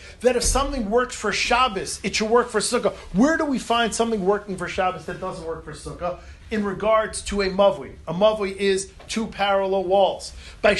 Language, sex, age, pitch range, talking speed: English, male, 40-59, 200-255 Hz, 200 wpm